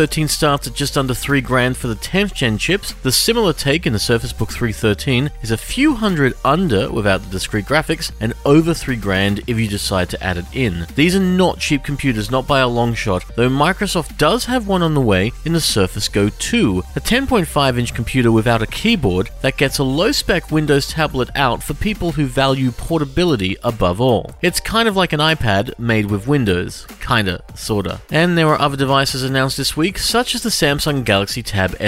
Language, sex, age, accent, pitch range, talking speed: English, male, 40-59, Australian, 105-150 Hz, 205 wpm